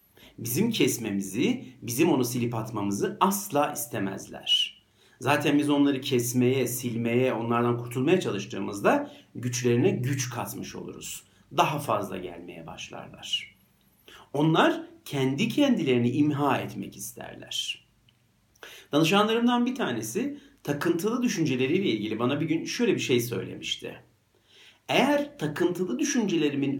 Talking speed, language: 105 wpm, Turkish